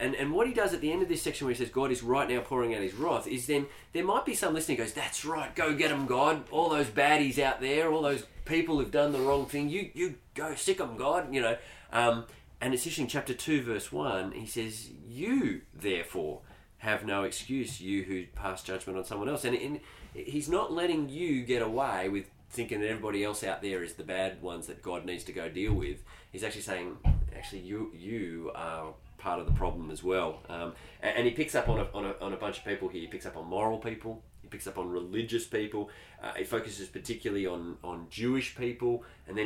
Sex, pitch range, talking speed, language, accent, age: male, 100-145 Hz, 235 wpm, English, Australian, 20-39